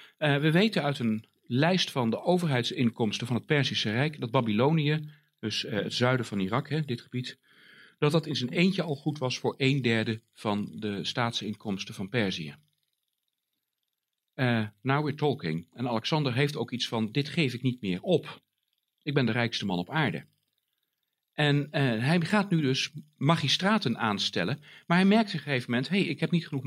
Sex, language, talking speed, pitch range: male, Dutch, 185 wpm, 115-160 Hz